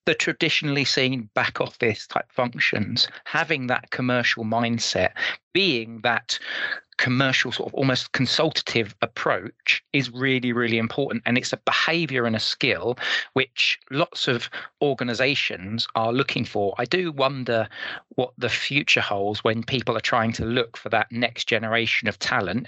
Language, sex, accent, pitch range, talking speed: English, male, British, 115-140 Hz, 150 wpm